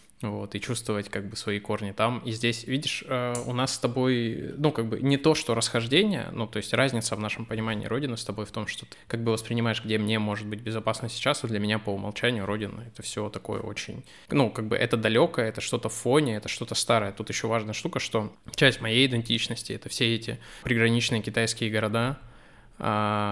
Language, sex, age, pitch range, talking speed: Russian, male, 20-39, 110-125 Hz, 210 wpm